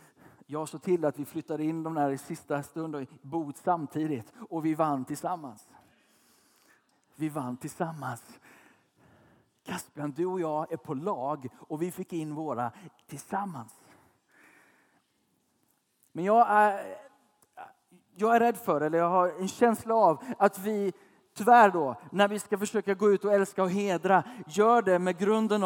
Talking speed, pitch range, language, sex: 155 wpm, 160-210 Hz, Swedish, male